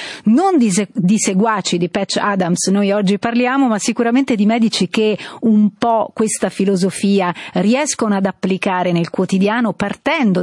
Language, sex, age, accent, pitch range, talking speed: Italian, female, 40-59, native, 190-235 Hz, 150 wpm